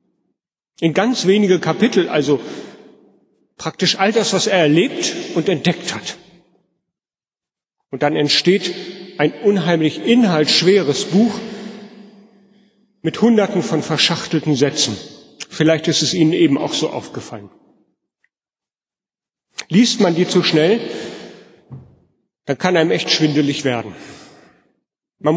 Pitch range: 160-195 Hz